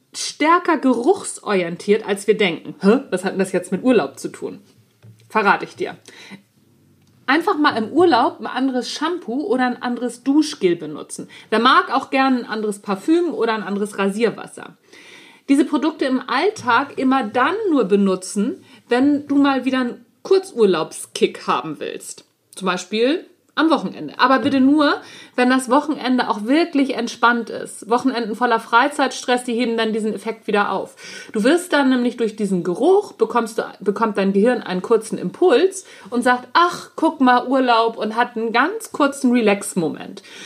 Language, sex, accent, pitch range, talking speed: German, female, German, 215-290 Hz, 160 wpm